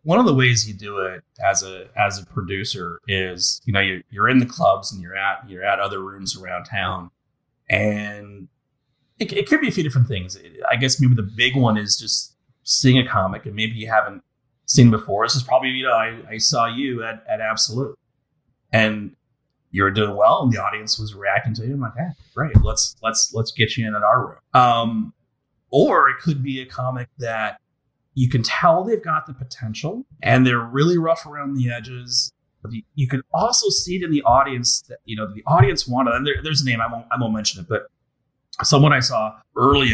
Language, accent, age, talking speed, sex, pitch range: English, American, 30-49, 220 wpm, male, 110-140 Hz